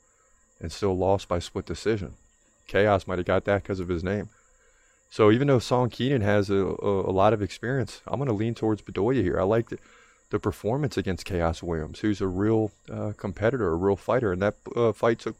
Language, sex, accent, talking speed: English, male, American, 205 wpm